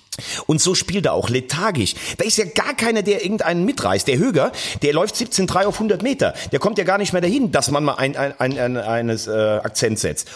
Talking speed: 230 wpm